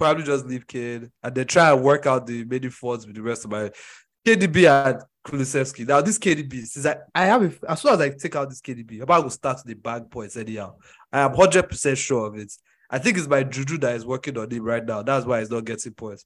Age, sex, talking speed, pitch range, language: 20-39, male, 260 wpm, 125-155 Hz, English